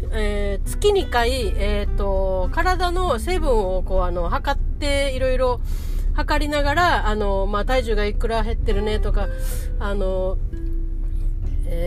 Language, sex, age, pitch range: Japanese, female, 40-59, 185-295 Hz